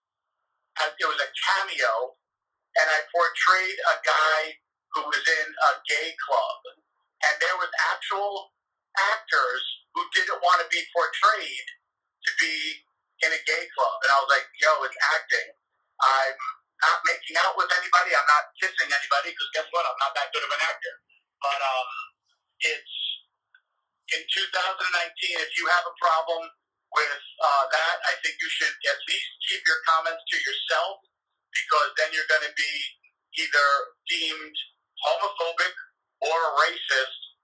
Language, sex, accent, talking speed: English, male, American, 150 wpm